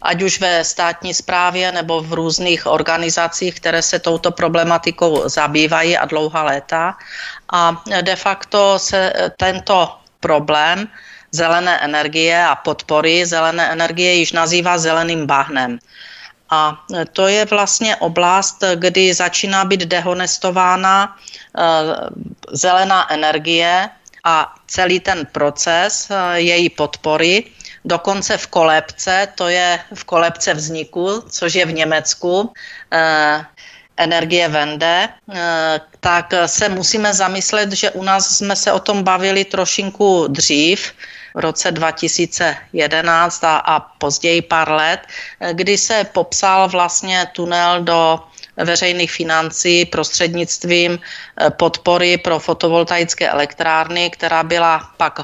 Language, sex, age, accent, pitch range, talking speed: Czech, female, 40-59, native, 160-180 Hz, 110 wpm